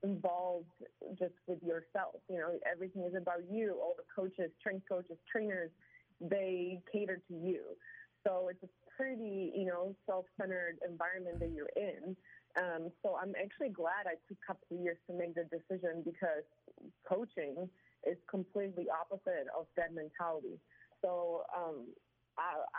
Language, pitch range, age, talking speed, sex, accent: English, 175-195 Hz, 30-49, 145 wpm, female, American